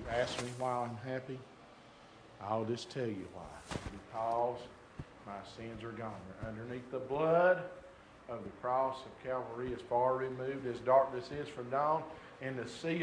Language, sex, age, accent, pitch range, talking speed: English, male, 50-69, American, 100-130 Hz, 160 wpm